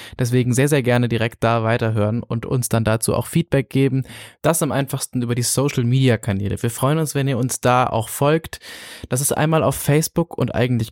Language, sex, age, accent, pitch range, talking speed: German, male, 20-39, German, 115-135 Hz, 200 wpm